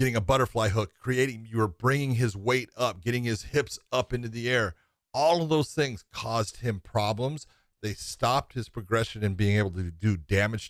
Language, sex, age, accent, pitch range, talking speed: English, male, 40-59, American, 105-130 Hz, 195 wpm